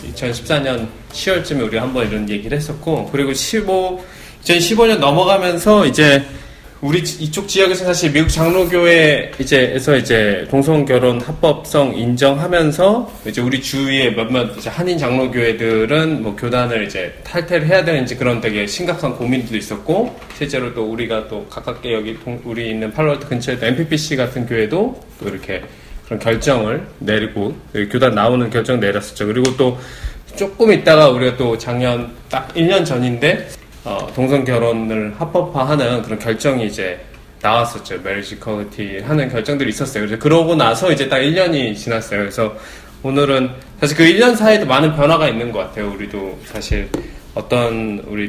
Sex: male